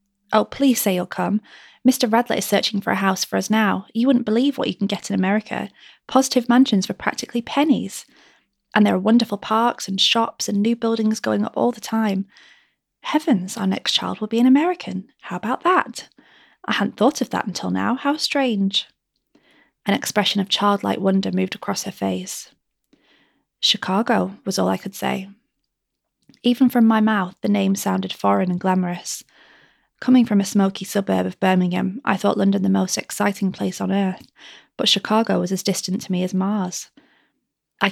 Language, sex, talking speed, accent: English, female, 180 wpm, British